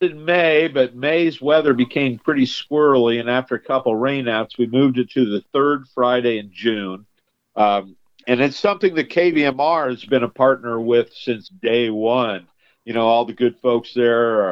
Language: English